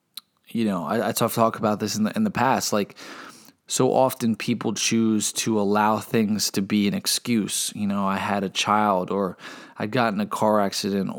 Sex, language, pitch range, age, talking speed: male, English, 100-120 Hz, 20-39, 200 wpm